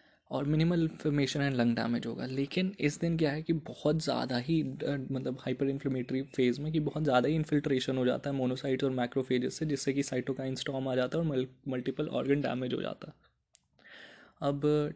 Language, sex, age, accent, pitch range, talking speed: Hindi, male, 20-39, native, 130-145 Hz, 200 wpm